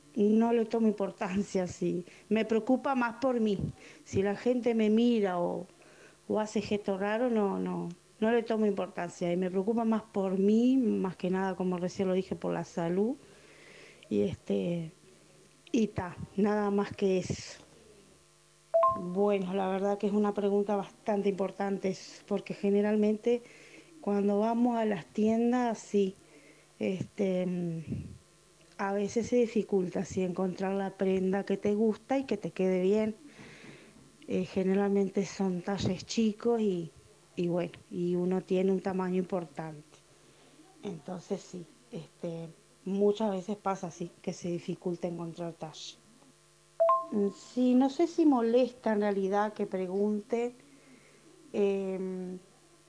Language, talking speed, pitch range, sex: Spanish, 135 wpm, 185-220 Hz, female